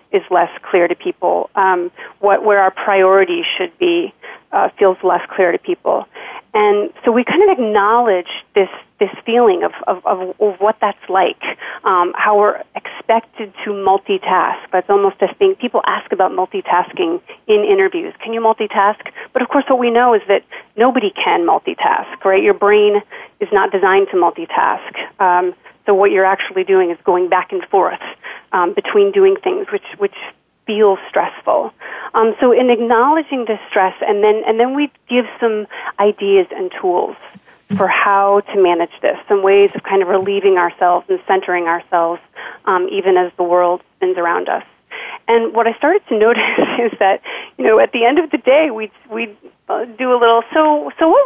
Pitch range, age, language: 195-295 Hz, 30-49, English